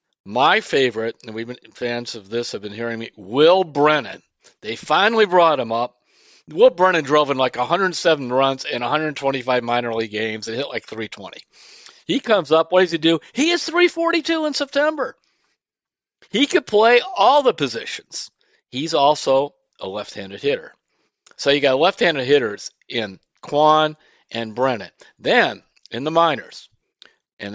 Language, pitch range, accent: English, 115-180 Hz, American